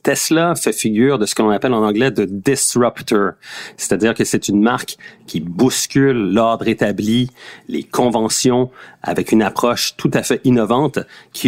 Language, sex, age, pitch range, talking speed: French, male, 40-59, 95-125 Hz, 155 wpm